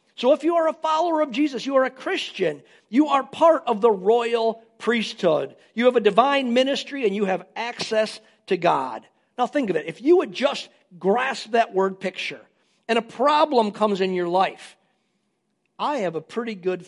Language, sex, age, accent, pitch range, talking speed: English, male, 50-69, American, 190-305 Hz, 190 wpm